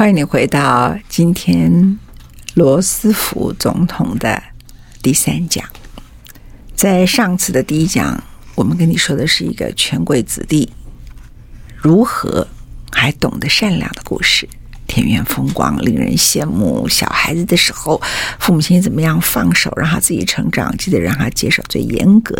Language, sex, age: Chinese, female, 50-69